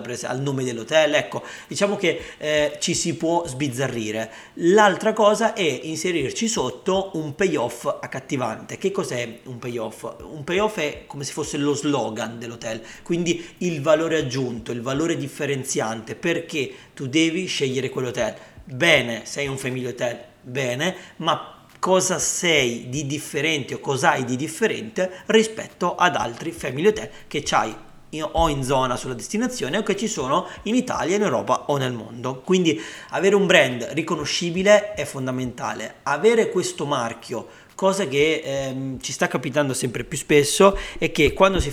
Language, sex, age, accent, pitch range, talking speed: Italian, male, 40-59, native, 125-160 Hz, 150 wpm